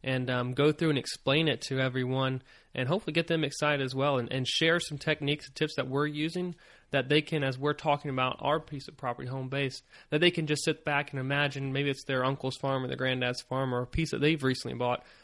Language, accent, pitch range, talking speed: English, American, 125-150 Hz, 250 wpm